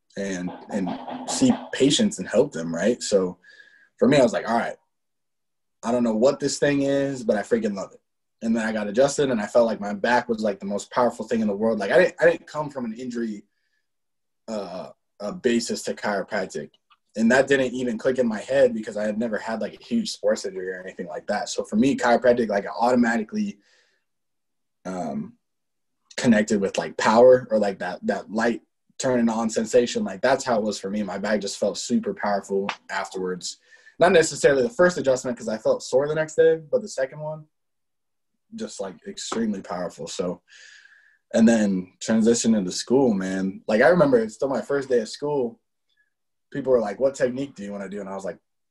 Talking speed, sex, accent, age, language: 210 wpm, male, American, 20-39, English